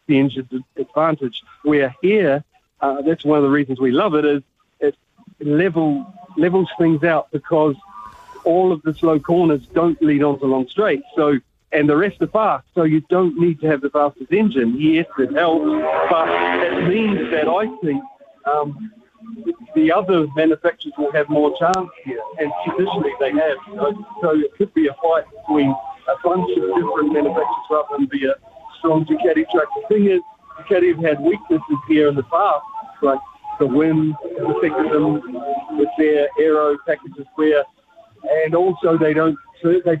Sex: male